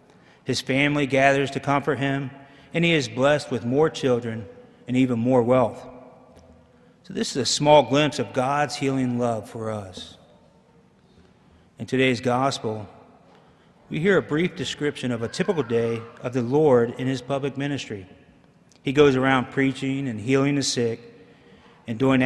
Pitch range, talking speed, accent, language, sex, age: 125-150 Hz, 155 wpm, American, English, male, 40-59